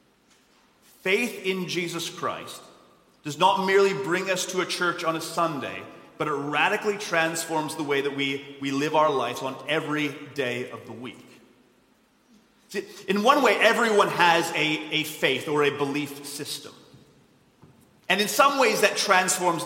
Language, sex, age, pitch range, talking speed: English, male, 30-49, 150-200 Hz, 160 wpm